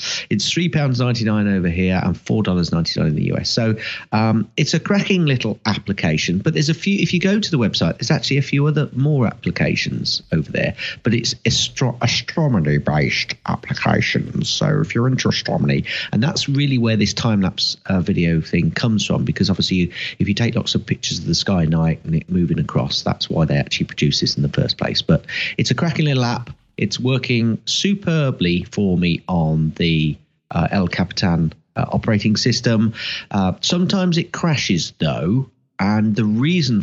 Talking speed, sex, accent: 185 wpm, male, British